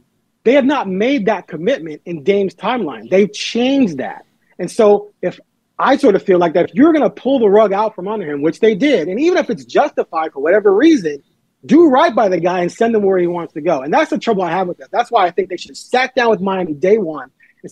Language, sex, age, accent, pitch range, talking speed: English, male, 30-49, American, 185-250 Hz, 260 wpm